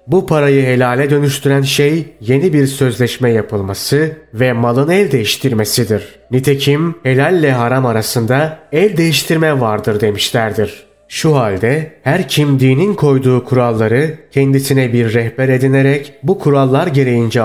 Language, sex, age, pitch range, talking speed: Turkish, male, 30-49, 120-145 Hz, 120 wpm